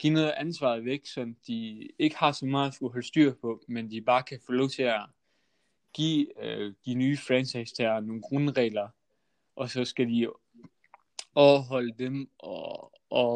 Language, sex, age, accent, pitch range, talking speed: Danish, male, 20-39, native, 115-135 Hz, 175 wpm